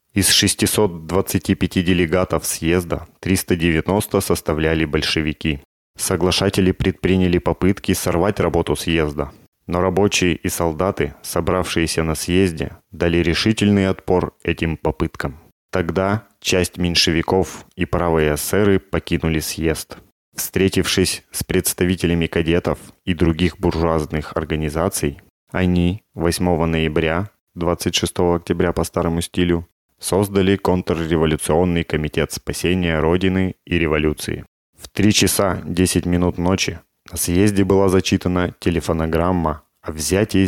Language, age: Russian, 30-49